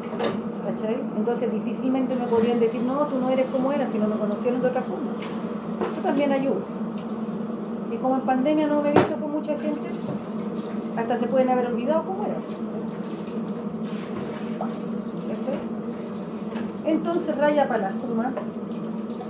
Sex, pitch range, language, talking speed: female, 220-260 Hz, Spanish, 140 wpm